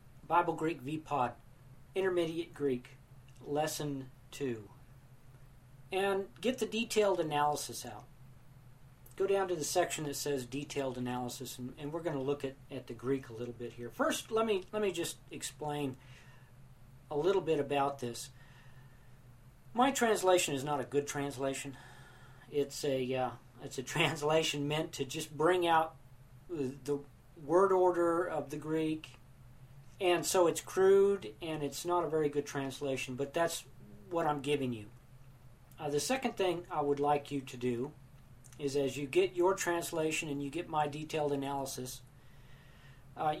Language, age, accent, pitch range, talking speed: English, 40-59, American, 130-160 Hz, 155 wpm